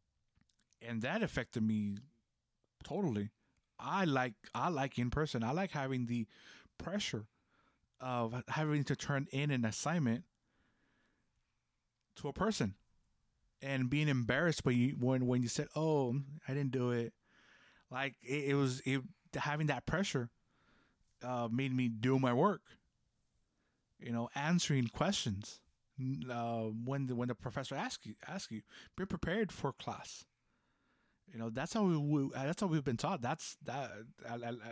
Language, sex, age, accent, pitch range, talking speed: English, male, 20-39, American, 120-150 Hz, 150 wpm